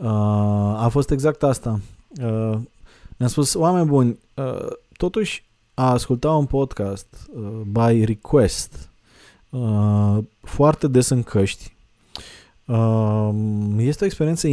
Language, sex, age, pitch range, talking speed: Romanian, male, 20-39, 105-130 Hz, 95 wpm